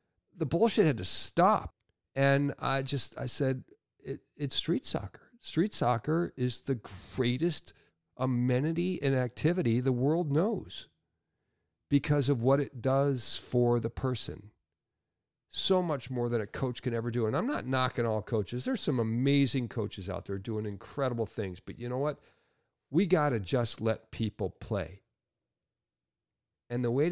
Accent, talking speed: American, 155 wpm